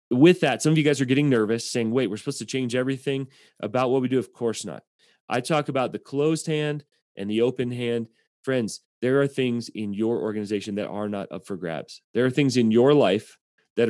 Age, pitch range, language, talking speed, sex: 30-49, 110-140 Hz, English, 230 wpm, male